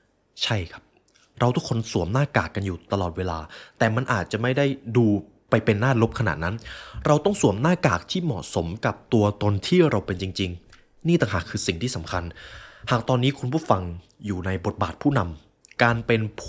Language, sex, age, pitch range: Thai, male, 20-39, 95-125 Hz